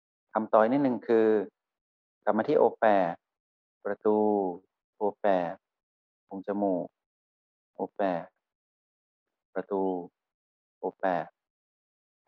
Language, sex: Thai, male